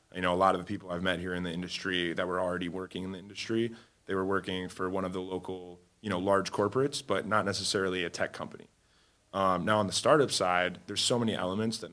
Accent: American